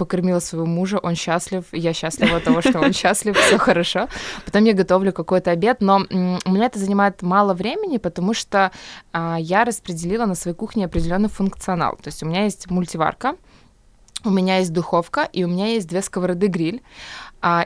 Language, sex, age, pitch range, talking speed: Ukrainian, female, 20-39, 175-200 Hz, 180 wpm